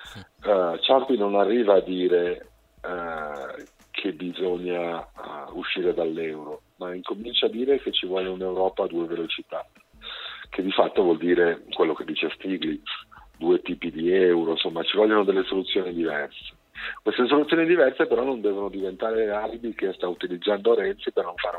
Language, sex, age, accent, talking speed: Italian, male, 50-69, native, 160 wpm